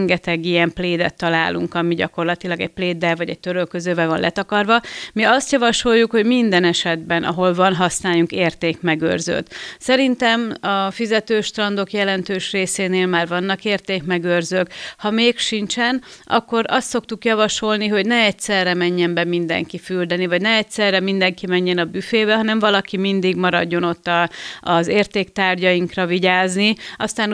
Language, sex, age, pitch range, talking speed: Hungarian, female, 30-49, 175-215 Hz, 140 wpm